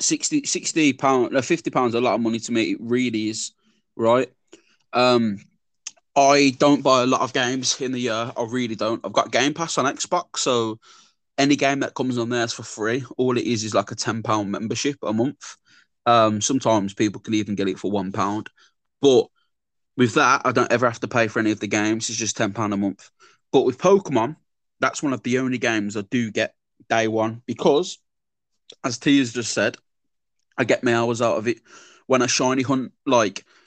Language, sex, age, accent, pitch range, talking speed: English, male, 20-39, British, 110-135 Hz, 205 wpm